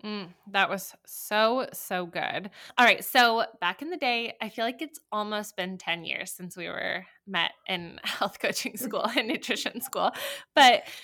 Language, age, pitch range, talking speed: English, 20-39, 185-235 Hz, 180 wpm